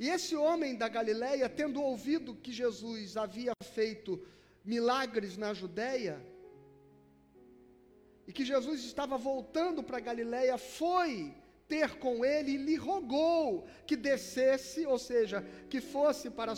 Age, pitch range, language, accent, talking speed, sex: 40-59, 235-285 Hz, Portuguese, Brazilian, 130 wpm, male